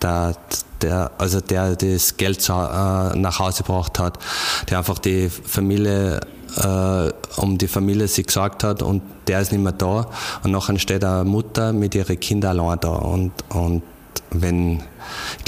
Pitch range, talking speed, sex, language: 90-100 Hz, 165 wpm, male, German